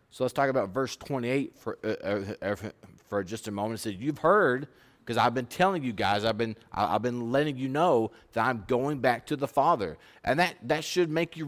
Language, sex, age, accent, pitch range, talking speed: English, male, 30-49, American, 115-155 Hz, 220 wpm